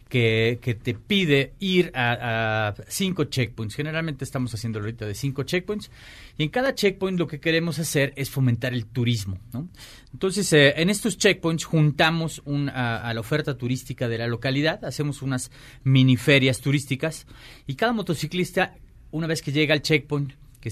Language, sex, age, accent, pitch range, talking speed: Spanish, male, 40-59, Mexican, 125-160 Hz, 170 wpm